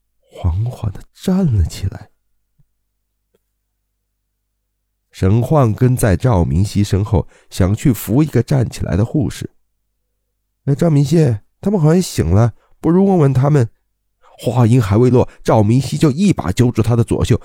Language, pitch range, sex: Chinese, 90-125 Hz, male